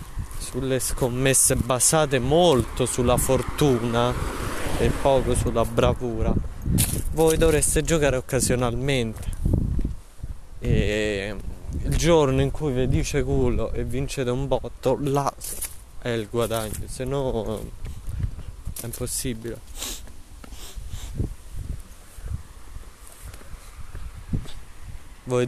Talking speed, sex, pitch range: 80 wpm, male, 100-130 Hz